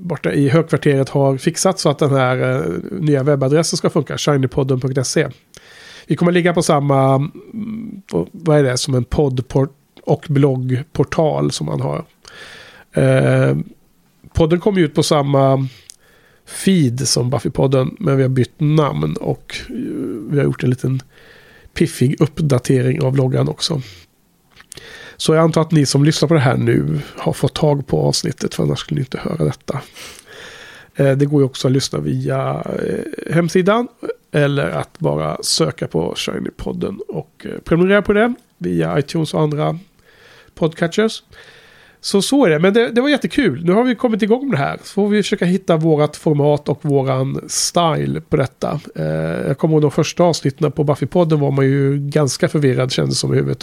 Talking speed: 160 wpm